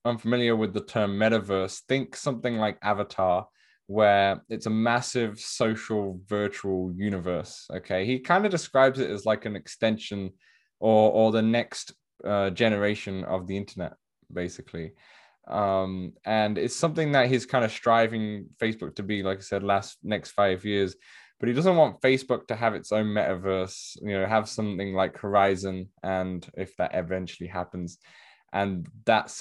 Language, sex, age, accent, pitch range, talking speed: English, male, 10-29, British, 95-120 Hz, 160 wpm